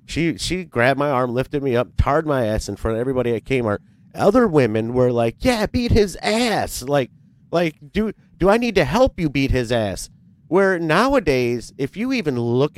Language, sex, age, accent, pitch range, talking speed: English, male, 30-49, American, 105-145 Hz, 200 wpm